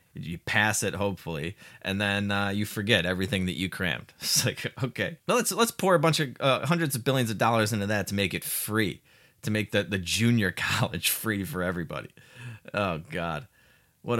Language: English